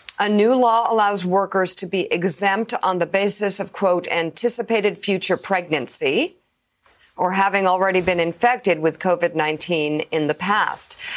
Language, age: English, 50-69